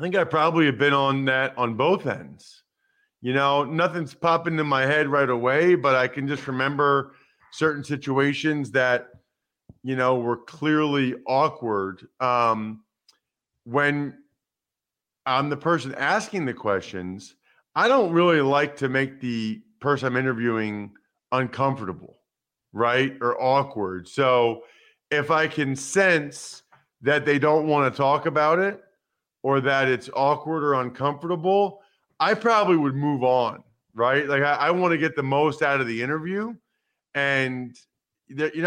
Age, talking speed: 40-59, 145 wpm